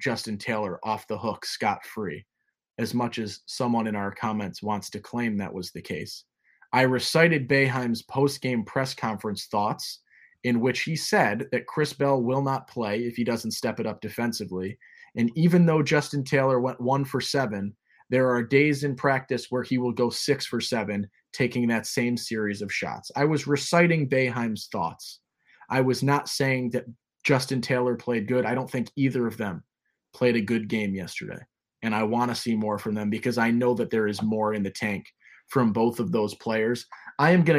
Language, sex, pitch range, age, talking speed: English, male, 115-140 Hz, 20-39, 200 wpm